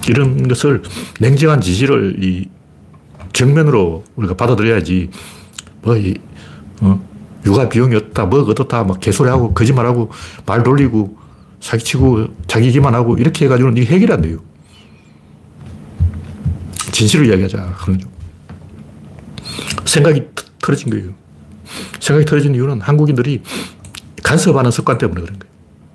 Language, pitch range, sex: Korean, 95-140 Hz, male